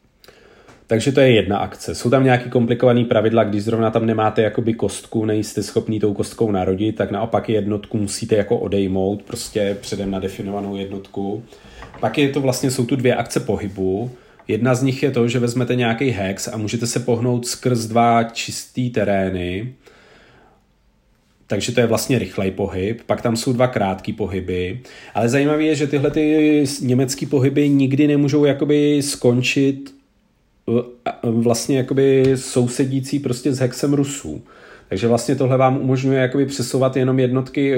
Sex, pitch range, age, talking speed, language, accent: male, 110-130 Hz, 40-59, 155 wpm, Czech, native